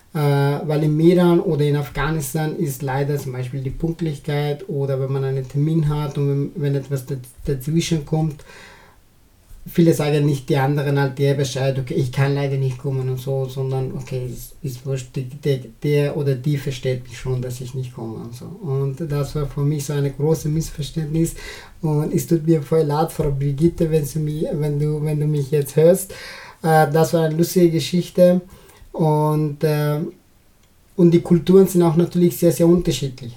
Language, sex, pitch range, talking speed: German, male, 140-160 Hz, 175 wpm